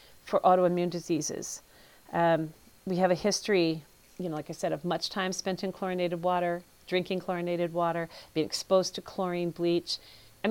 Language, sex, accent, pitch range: English, female, American, 175-230 Hz